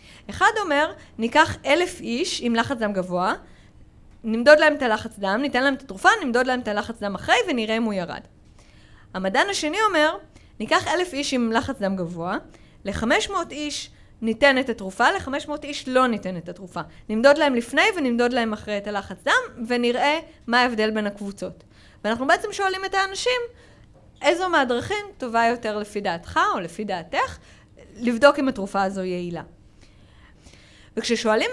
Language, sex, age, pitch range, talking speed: Hebrew, female, 20-39, 205-310 Hz, 160 wpm